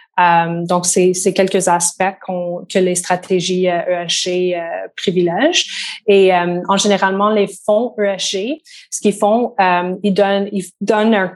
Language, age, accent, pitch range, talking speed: French, 20-39, Canadian, 180-200 Hz, 160 wpm